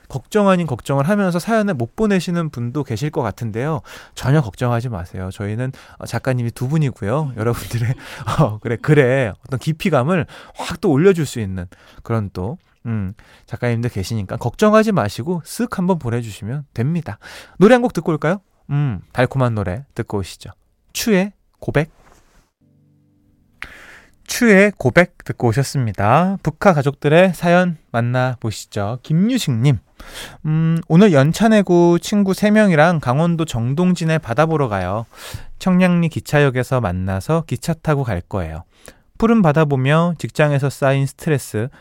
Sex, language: male, Korean